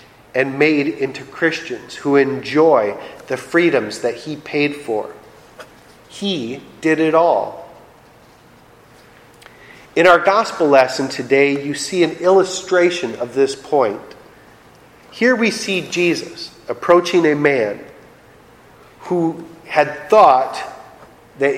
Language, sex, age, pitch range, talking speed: English, male, 40-59, 140-190 Hz, 110 wpm